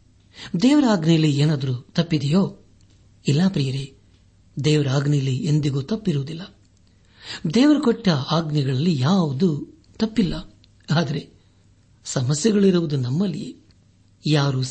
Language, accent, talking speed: Kannada, native, 80 wpm